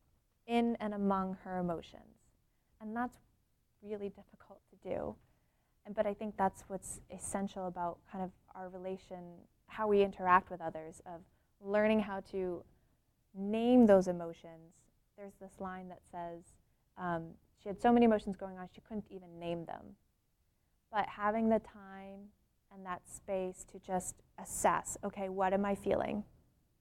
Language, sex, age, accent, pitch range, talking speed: English, female, 20-39, American, 185-215 Hz, 150 wpm